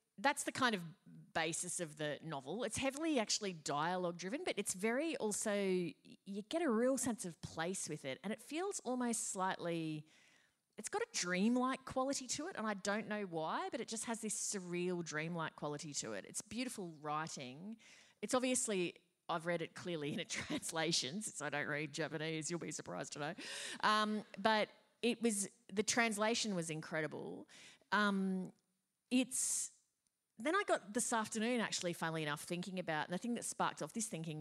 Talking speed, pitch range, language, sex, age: 180 wpm, 160-230 Hz, English, female, 30-49